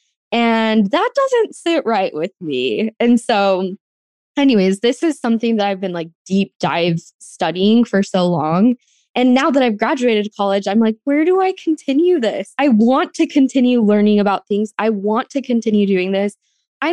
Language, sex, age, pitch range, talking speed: English, female, 10-29, 195-245 Hz, 175 wpm